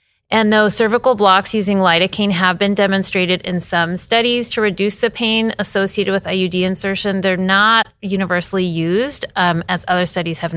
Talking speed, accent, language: 165 wpm, American, English